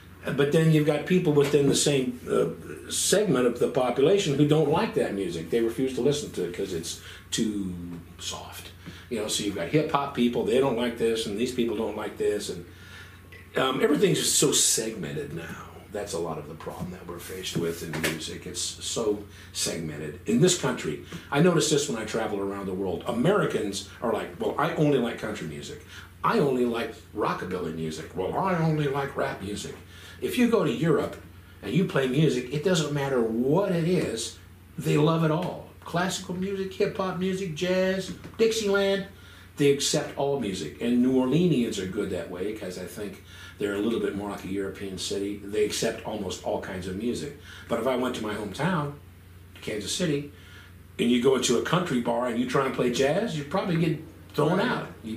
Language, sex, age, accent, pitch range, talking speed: English, male, 50-69, American, 95-155 Hz, 200 wpm